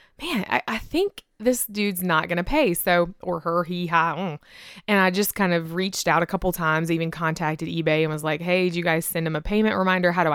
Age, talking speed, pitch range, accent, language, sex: 20-39, 250 wpm, 170-230 Hz, American, English, female